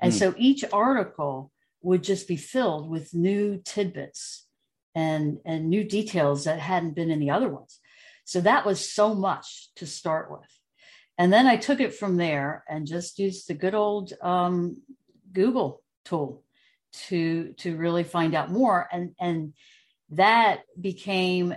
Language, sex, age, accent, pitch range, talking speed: English, female, 60-79, American, 155-190 Hz, 155 wpm